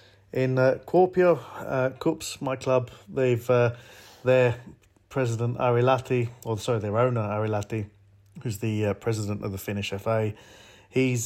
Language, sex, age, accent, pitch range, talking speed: English, male, 40-59, British, 105-120 Hz, 140 wpm